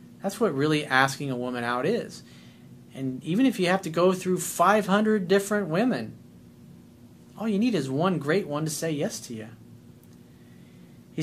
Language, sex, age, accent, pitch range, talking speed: English, male, 40-59, American, 130-195 Hz, 170 wpm